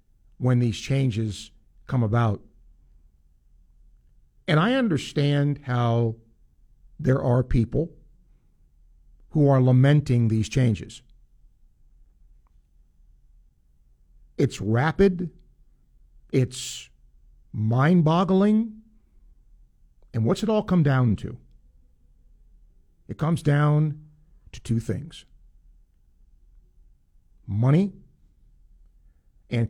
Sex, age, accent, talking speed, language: male, 50-69, American, 75 wpm, English